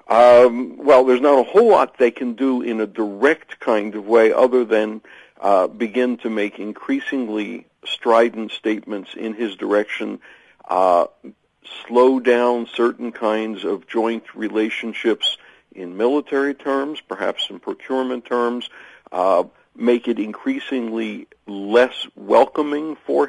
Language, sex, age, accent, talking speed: English, male, 60-79, American, 130 wpm